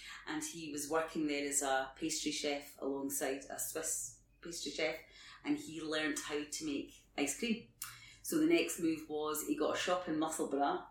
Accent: British